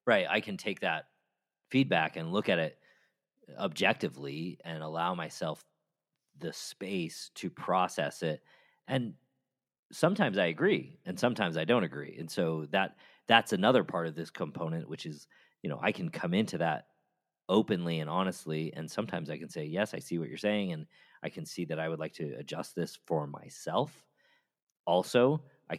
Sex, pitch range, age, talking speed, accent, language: male, 80-115 Hz, 40-59, 175 wpm, American, English